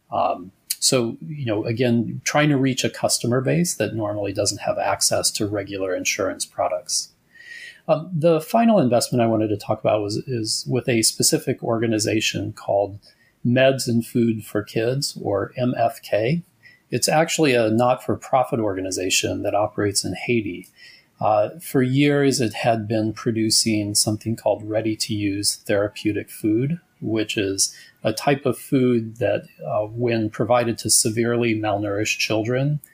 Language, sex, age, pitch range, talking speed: English, male, 30-49, 110-135 Hz, 145 wpm